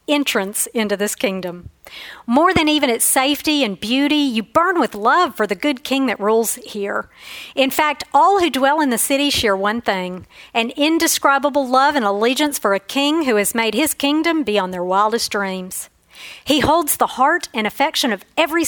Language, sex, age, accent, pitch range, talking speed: English, female, 50-69, American, 210-285 Hz, 185 wpm